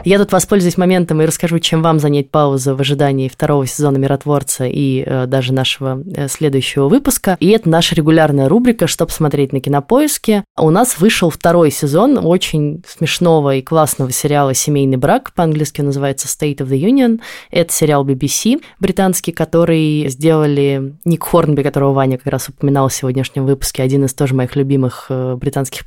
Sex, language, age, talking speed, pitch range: female, Russian, 20-39, 160 wpm, 140-180 Hz